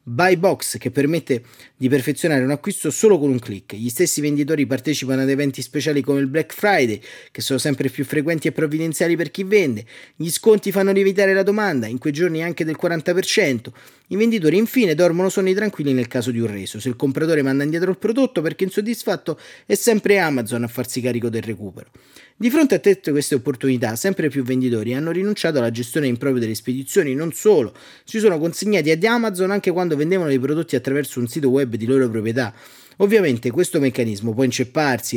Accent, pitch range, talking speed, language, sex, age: native, 125-170 Hz, 195 wpm, Italian, male, 30-49